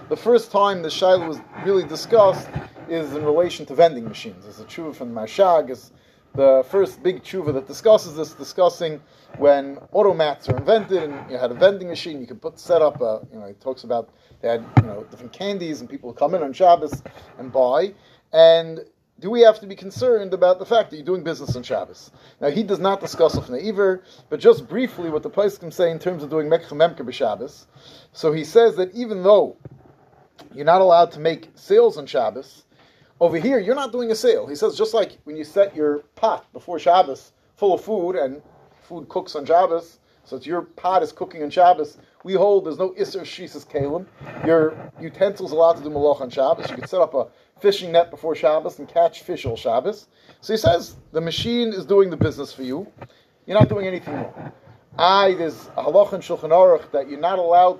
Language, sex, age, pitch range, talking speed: English, male, 30-49, 150-195 Hz, 215 wpm